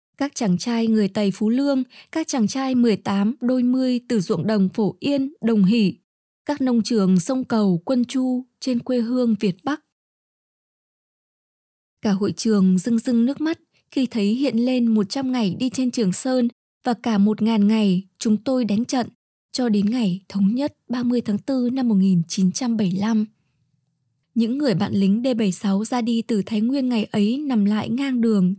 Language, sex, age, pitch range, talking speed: Vietnamese, female, 20-39, 200-250 Hz, 175 wpm